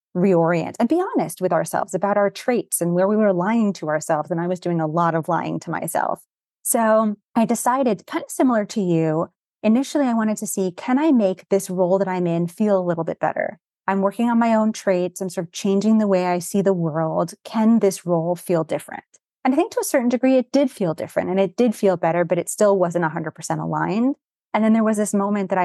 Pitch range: 175-210 Hz